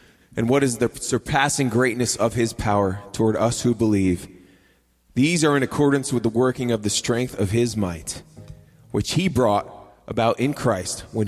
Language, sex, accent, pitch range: English, male, American, 105-120 Hz